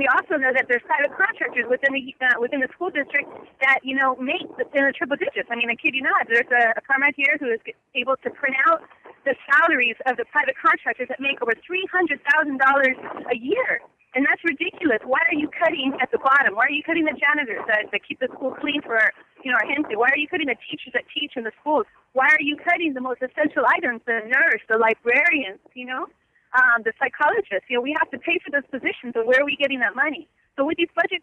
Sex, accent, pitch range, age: female, American, 255-320 Hz, 30-49